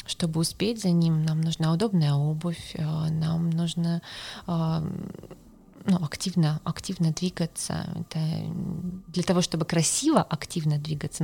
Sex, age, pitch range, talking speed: female, 20-39, 160-205 Hz, 110 wpm